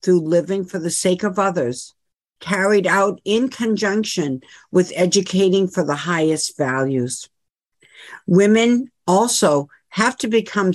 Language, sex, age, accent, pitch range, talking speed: English, female, 60-79, American, 170-210 Hz, 125 wpm